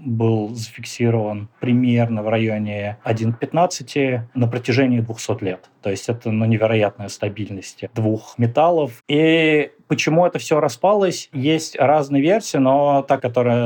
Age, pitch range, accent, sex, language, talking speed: 20-39, 110-135 Hz, native, male, Russian, 130 wpm